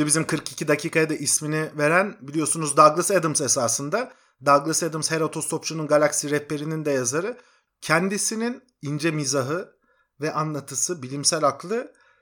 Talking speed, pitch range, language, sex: 125 wpm, 155-210 Hz, Turkish, male